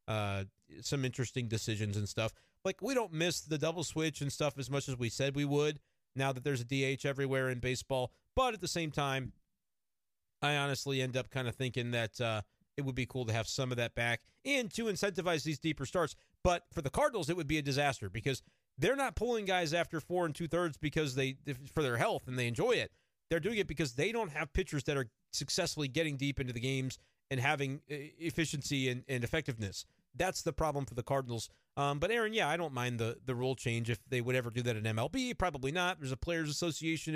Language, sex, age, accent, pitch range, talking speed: English, male, 40-59, American, 130-170 Hz, 230 wpm